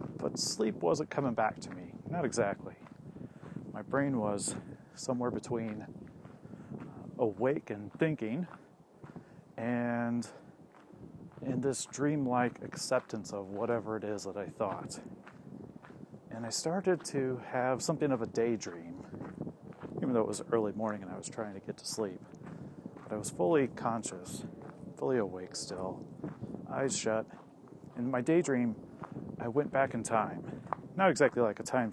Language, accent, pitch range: English, American, 105-135 Hz